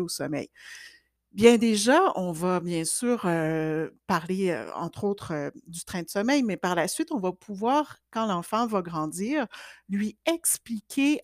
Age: 60-79